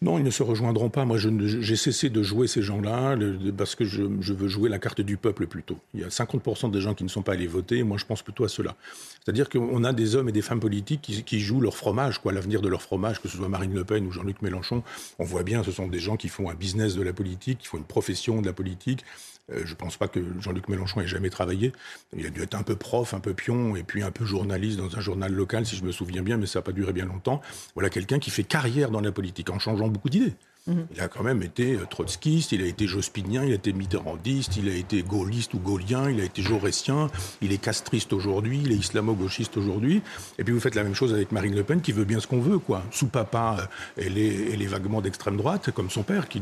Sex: male